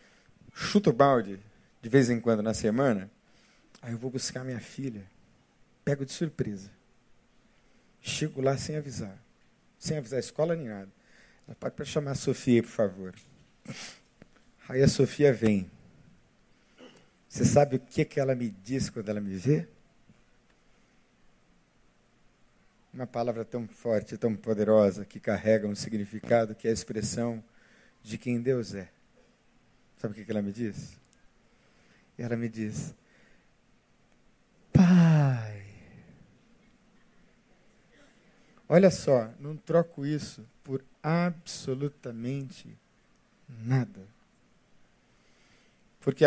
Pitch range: 110-150 Hz